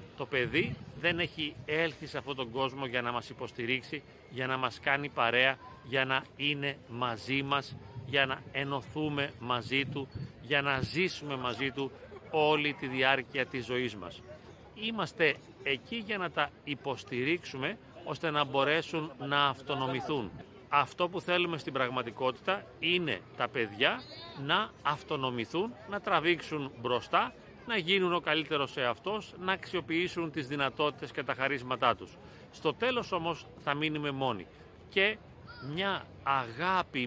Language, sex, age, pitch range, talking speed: Greek, male, 40-59, 130-165 Hz, 140 wpm